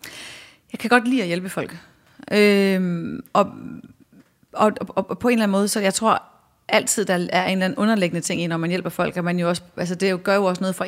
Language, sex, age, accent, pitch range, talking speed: Danish, female, 30-49, native, 180-230 Hz, 250 wpm